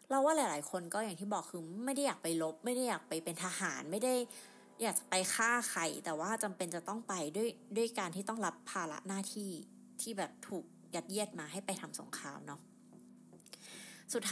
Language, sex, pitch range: Thai, female, 175-235 Hz